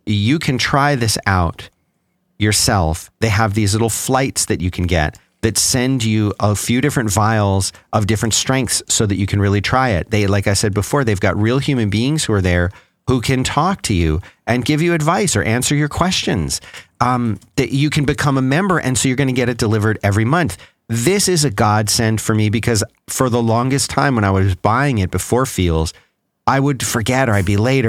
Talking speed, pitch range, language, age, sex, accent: 215 wpm, 100-130 Hz, English, 40-59, male, American